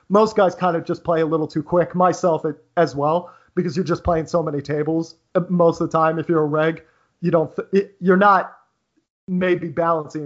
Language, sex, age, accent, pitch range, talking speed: English, male, 30-49, American, 150-180 Hz, 215 wpm